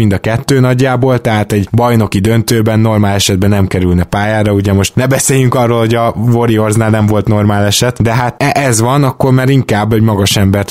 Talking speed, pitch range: 195 wpm, 100-120 Hz